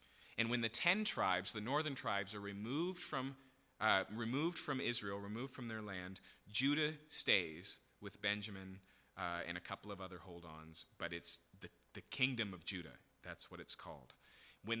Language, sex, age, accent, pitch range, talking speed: English, male, 30-49, American, 100-130 Hz, 170 wpm